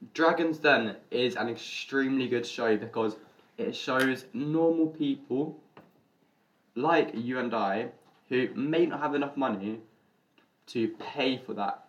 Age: 10-29